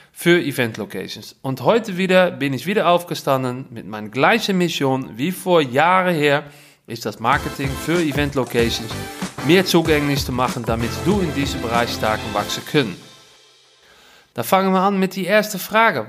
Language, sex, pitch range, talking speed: German, male, 130-185 Hz, 155 wpm